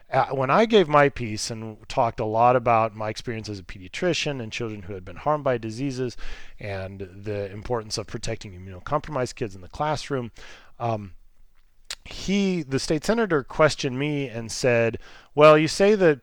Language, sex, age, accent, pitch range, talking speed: English, male, 30-49, American, 110-145 Hz, 170 wpm